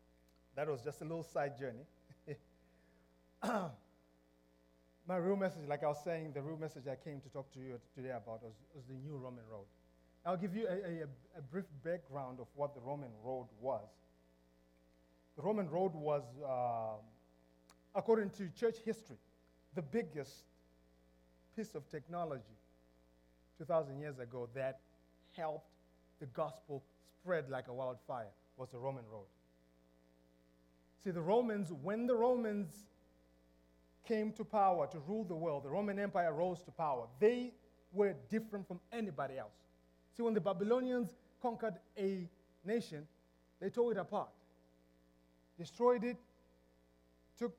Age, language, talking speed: 30-49, English, 140 wpm